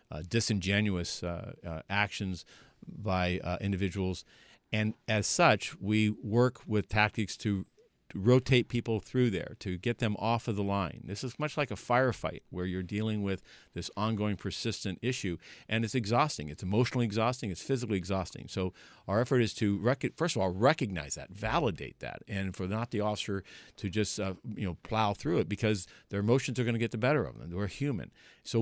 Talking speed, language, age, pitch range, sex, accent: 195 wpm, English, 50-69, 95-120 Hz, male, American